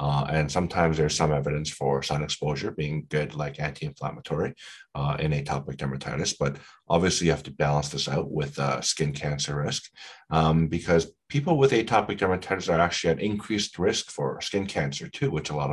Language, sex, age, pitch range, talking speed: English, male, 30-49, 75-90 Hz, 185 wpm